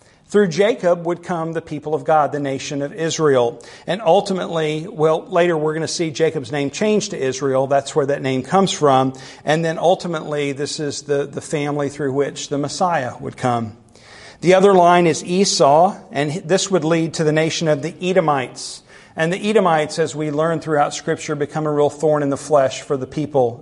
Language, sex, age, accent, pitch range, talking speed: English, male, 50-69, American, 145-175 Hz, 200 wpm